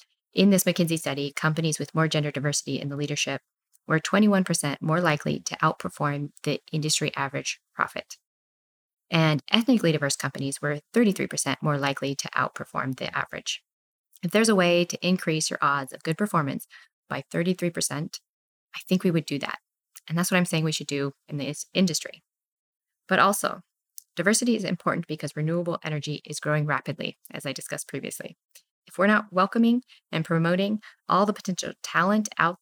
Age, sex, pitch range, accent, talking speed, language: 20-39, female, 150-185 Hz, American, 165 wpm, English